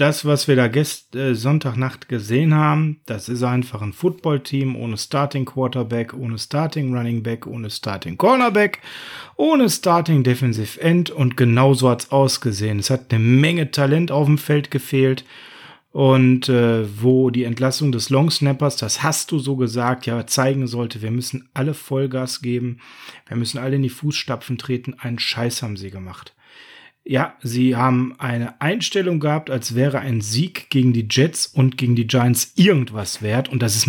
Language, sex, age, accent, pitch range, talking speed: German, male, 30-49, German, 120-145 Hz, 170 wpm